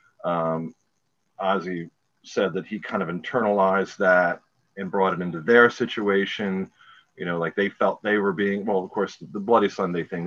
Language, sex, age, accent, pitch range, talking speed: English, male, 40-59, American, 90-120 Hz, 180 wpm